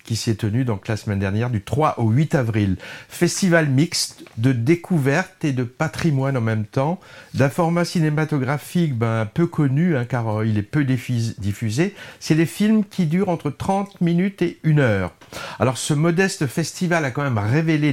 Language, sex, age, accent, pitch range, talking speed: French, male, 50-69, French, 120-170 Hz, 185 wpm